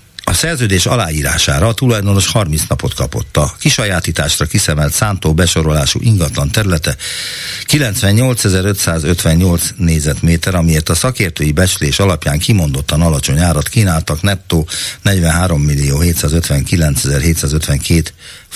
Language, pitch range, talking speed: Hungarian, 80-100 Hz, 90 wpm